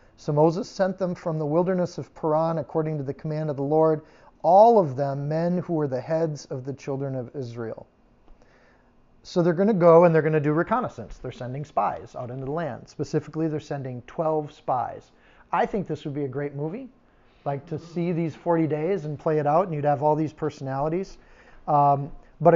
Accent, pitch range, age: American, 145-170 Hz, 40-59